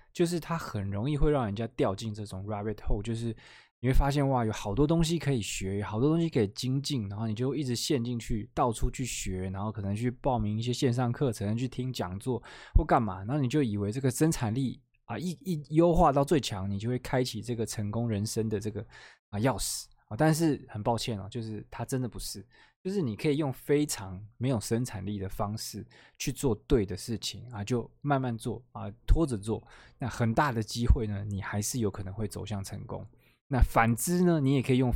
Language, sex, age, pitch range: Chinese, male, 20-39, 105-130 Hz